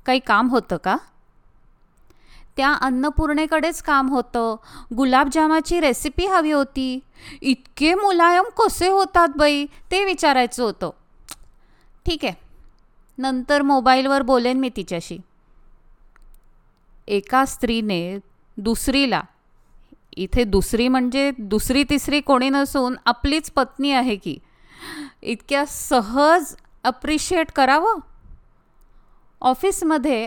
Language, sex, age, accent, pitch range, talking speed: Marathi, female, 20-39, native, 245-300 Hz, 90 wpm